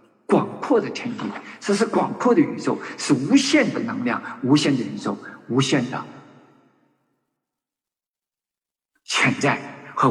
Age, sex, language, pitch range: 50-69, male, Chinese, 170-250 Hz